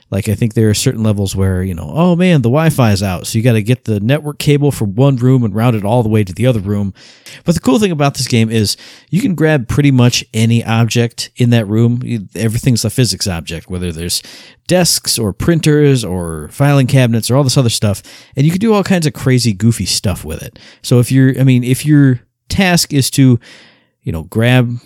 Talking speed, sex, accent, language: 235 wpm, male, American, English